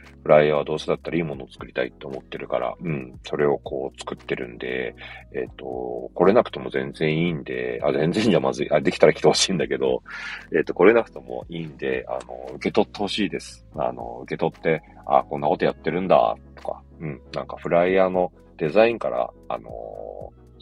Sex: male